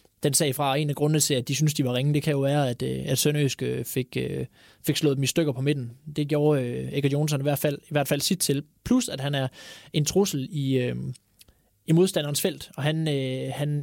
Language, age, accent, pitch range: Danish, 20-39, native, 135-155 Hz